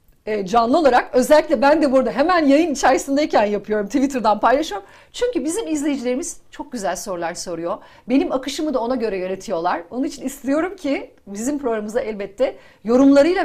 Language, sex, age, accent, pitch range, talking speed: Turkish, female, 40-59, native, 235-335 Hz, 145 wpm